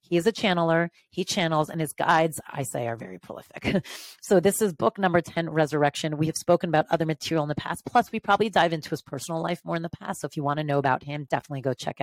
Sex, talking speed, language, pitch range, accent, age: female, 265 wpm, English, 140-175 Hz, American, 30-49